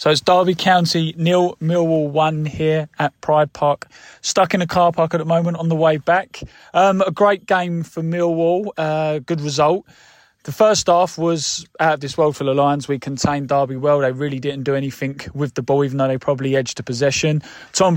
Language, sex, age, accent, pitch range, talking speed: English, male, 20-39, British, 140-165 Hz, 210 wpm